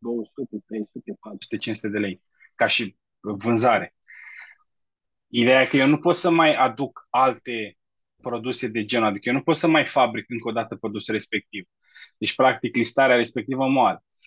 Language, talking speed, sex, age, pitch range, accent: Romanian, 165 wpm, male, 20-39, 110-125 Hz, native